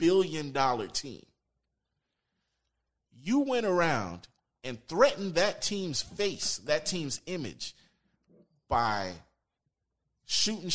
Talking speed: 90 wpm